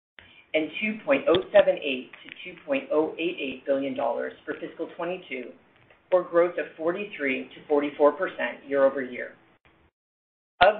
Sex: female